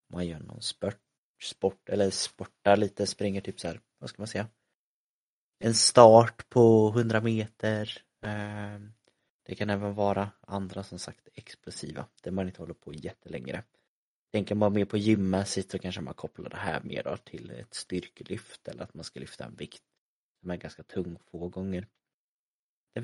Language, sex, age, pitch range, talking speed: Swedish, male, 30-49, 95-105 Hz, 170 wpm